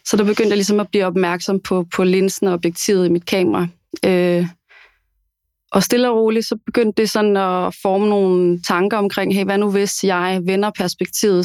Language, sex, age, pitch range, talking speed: Danish, female, 20-39, 180-205 Hz, 185 wpm